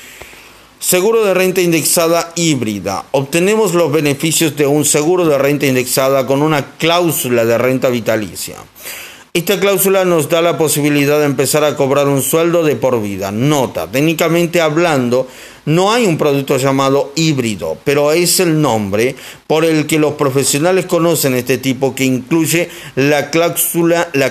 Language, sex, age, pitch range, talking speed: Spanish, male, 40-59, 135-170 Hz, 145 wpm